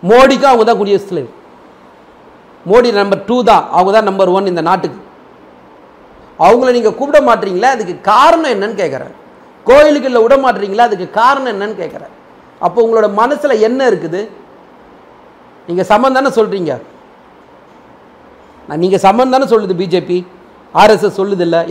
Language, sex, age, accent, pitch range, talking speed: Tamil, male, 40-59, native, 175-235 Hz, 125 wpm